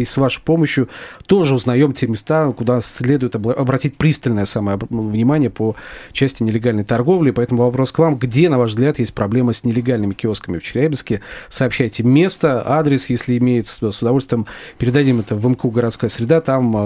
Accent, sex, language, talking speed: native, male, Russian, 170 wpm